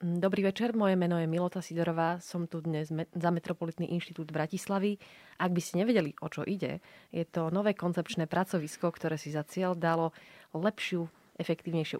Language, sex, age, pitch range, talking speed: Slovak, female, 20-39, 155-185 Hz, 165 wpm